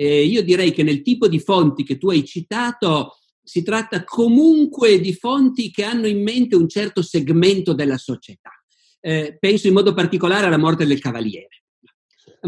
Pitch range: 140-190 Hz